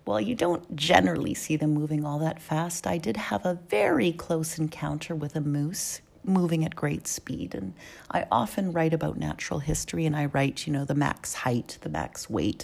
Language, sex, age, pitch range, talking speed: English, female, 40-59, 150-195 Hz, 200 wpm